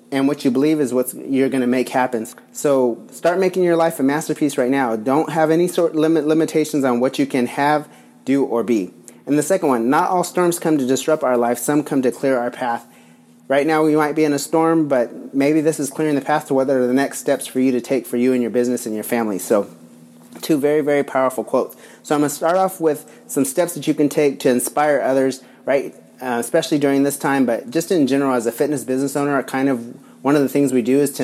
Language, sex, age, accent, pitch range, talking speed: English, male, 30-49, American, 125-150 Hz, 255 wpm